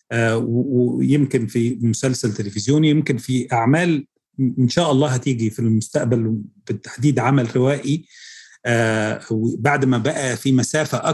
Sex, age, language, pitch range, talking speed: male, 40-59, Arabic, 120-150 Hz, 130 wpm